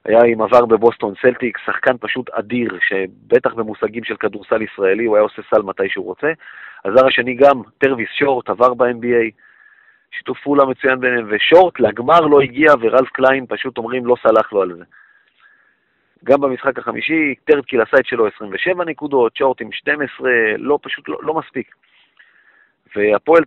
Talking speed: 160 wpm